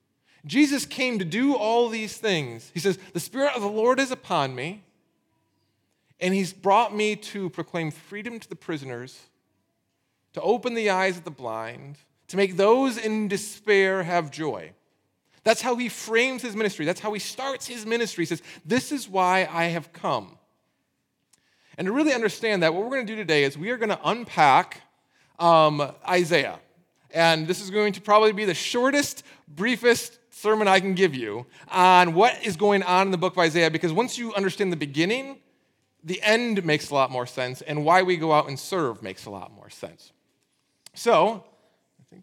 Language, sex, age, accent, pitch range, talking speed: English, male, 30-49, American, 150-215 Hz, 190 wpm